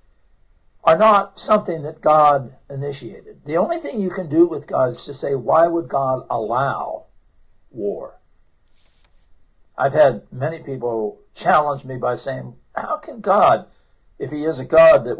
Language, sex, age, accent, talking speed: English, male, 60-79, American, 155 wpm